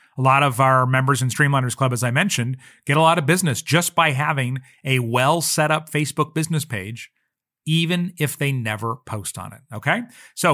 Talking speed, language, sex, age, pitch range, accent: 190 wpm, English, male, 30-49, 130-175 Hz, American